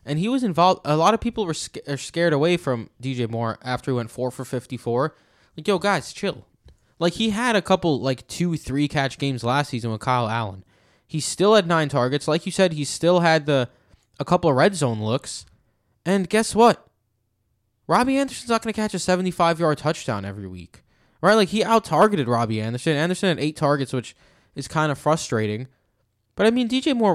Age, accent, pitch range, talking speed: 20-39, American, 120-155 Hz, 195 wpm